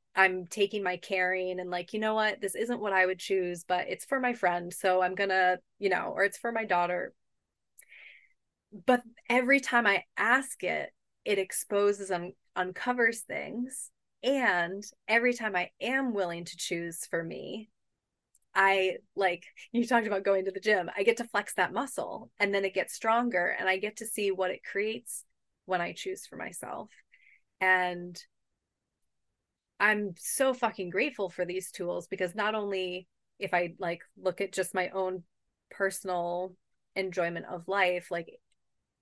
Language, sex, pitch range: English, female, 180-220 Hz